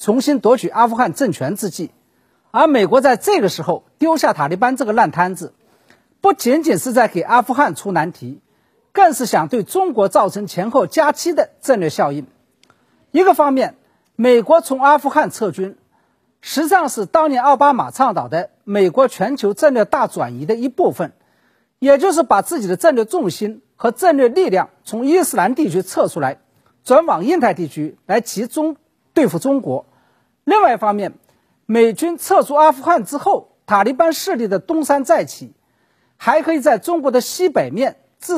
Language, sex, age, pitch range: Chinese, male, 50-69, 215-320 Hz